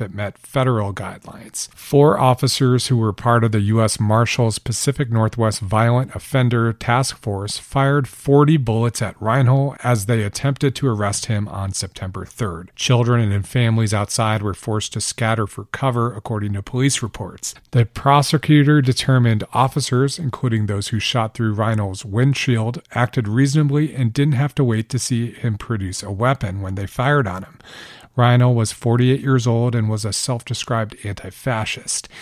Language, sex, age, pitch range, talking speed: English, male, 40-59, 105-130 Hz, 160 wpm